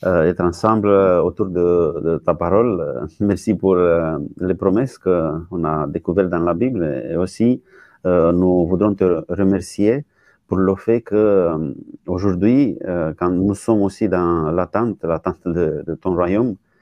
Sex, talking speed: male, 150 wpm